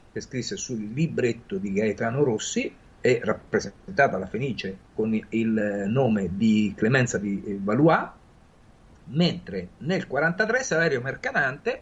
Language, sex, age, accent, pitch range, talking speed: Italian, male, 50-69, native, 105-170 Hz, 115 wpm